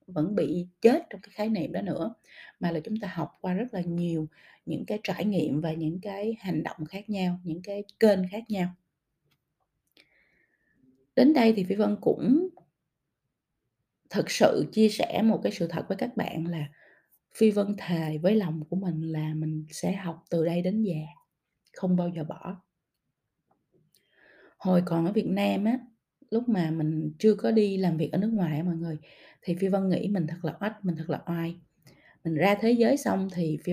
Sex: female